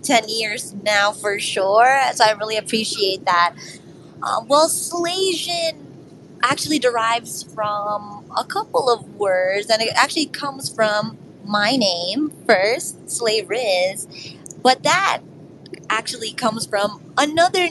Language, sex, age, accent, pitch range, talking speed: English, female, 20-39, American, 195-245 Hz, 120 wpm